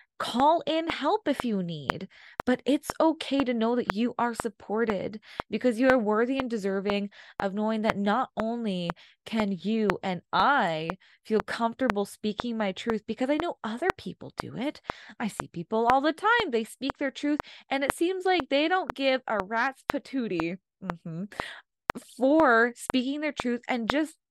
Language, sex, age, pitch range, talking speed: English, female, 20-39, 195-265 Hz, 175 wpm